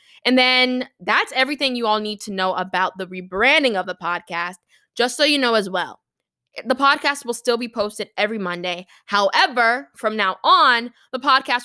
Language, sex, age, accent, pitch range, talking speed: English, female, 10-29, American, 185-240 Hz, 180 wpm